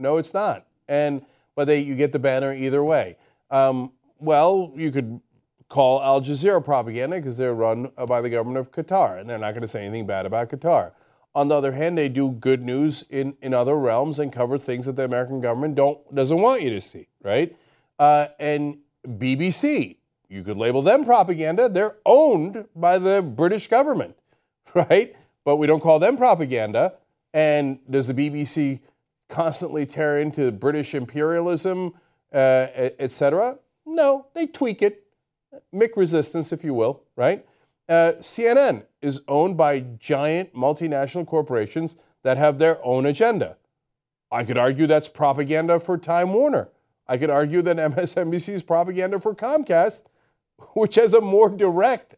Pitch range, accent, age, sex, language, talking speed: 135-180 Hz, American, 40-59, male, English, 165 wpm